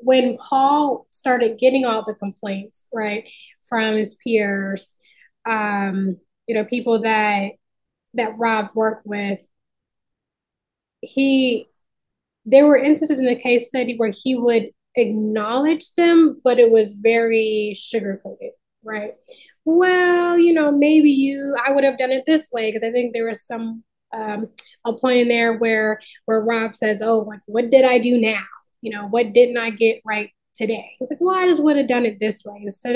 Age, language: 10-29, English